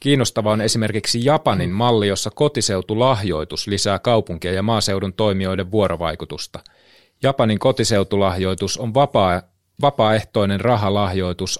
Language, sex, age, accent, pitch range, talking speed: Finnish, male, 30-49, native, 90-110 Hz, 95 wpm